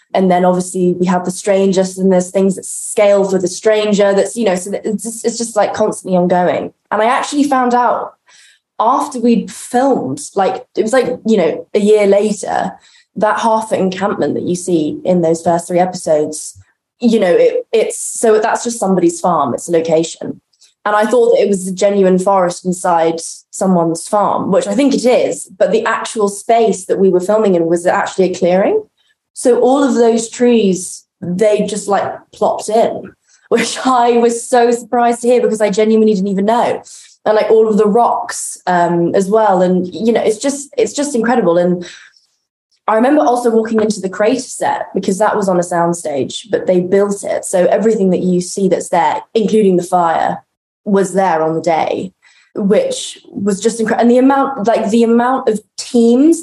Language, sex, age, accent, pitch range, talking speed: English, female, 20-39, British, 185-235 Hz, 195 wpm